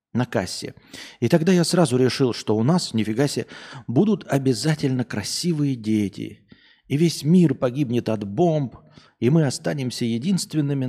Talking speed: 145 wpm